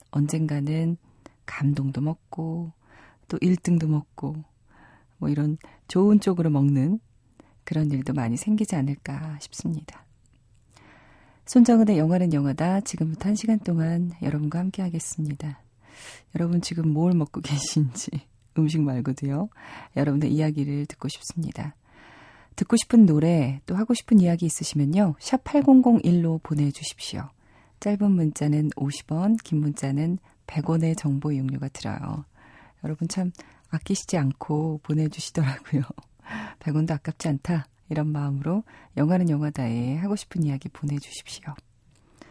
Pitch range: 140-175 Hz